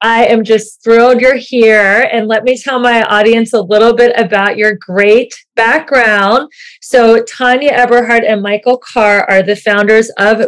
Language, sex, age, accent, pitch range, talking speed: English, female, 30-49, American, 195-250 Hz, 165 wpm